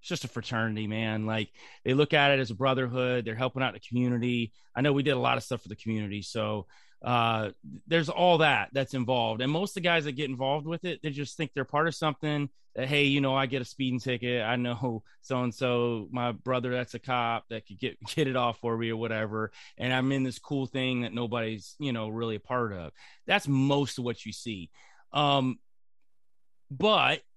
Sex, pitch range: male, 115-145 Hz